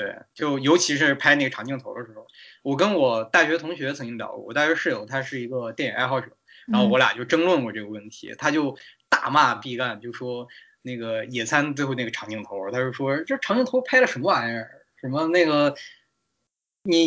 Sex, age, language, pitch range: male, 20-39, Chinese, 125-185 Hz